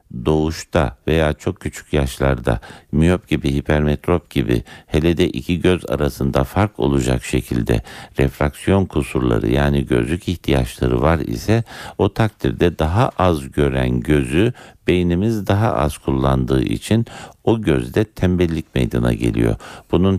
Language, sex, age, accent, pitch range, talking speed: Turkish, male, 60-79, native, 70-90 Hz, 120 wpm